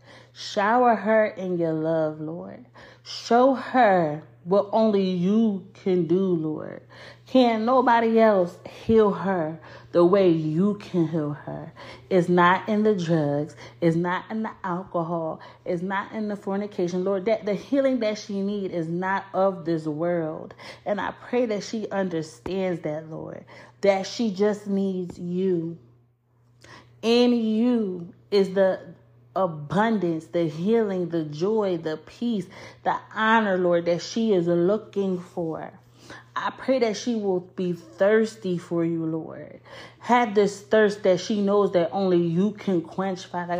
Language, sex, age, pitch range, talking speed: English, female, 30-49, 170-215 Hz, 145 wpm